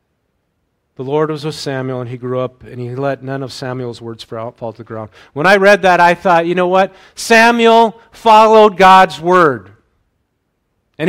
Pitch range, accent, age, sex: 110-150 Hz, American, 40-59, male